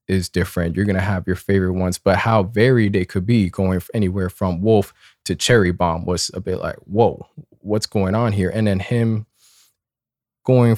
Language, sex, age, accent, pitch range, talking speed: English, male, 20-39, American, 95-115 Hz, 195 wpm